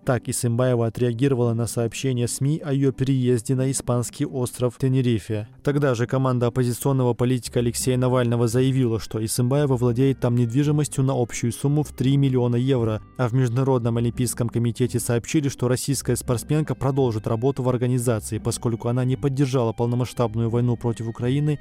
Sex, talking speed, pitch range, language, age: male, 150 wpm, 120-135 Hz, Russian, 20-39